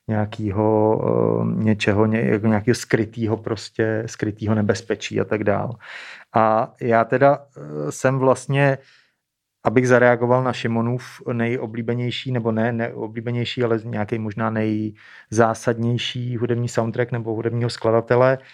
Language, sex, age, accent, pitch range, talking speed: Czech, male, 30-49, native, 115-130 Hz, 100 wpm